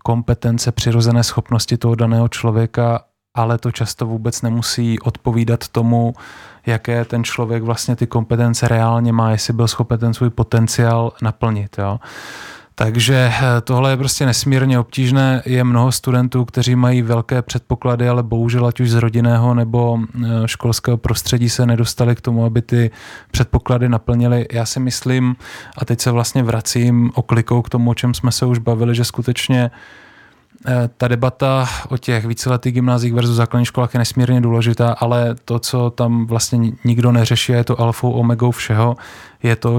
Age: 20-39